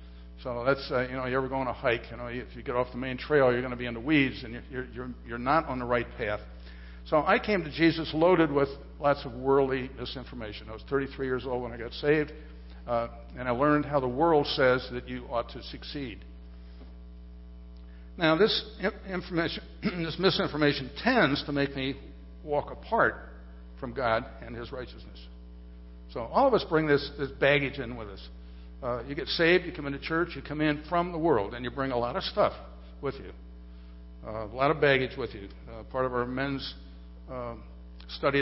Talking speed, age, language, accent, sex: 210 wpm, 60-79, English, American, male